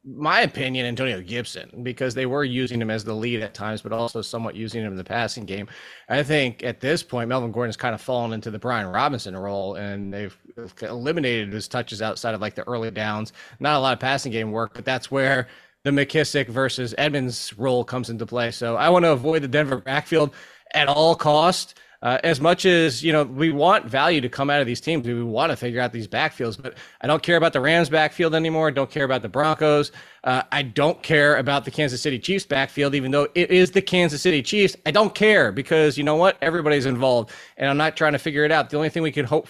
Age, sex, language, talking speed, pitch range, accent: 20-39, male, English, 240 wpm, 120-155 Hz, American